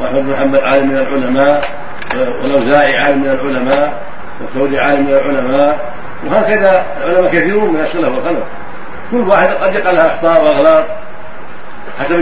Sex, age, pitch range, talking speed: male, 50-69, 145-195 Hz, 135 wpm